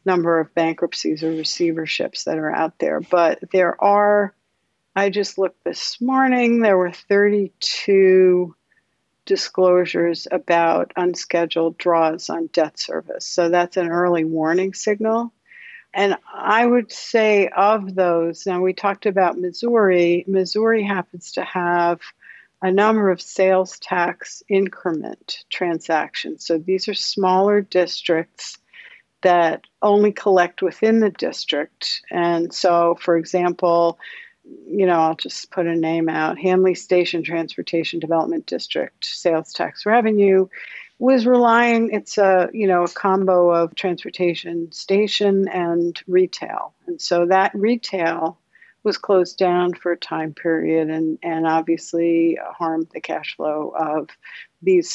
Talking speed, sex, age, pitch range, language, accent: 130 wpm, female, 60-79, 170-205 Hz, English, American